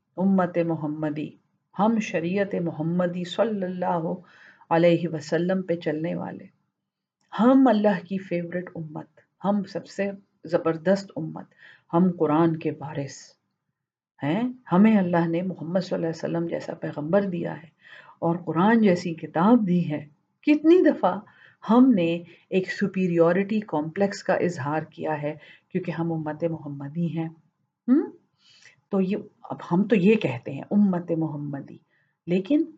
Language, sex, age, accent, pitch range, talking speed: English, female, 50-69, Indian, 160-200 Hz, 110 wpm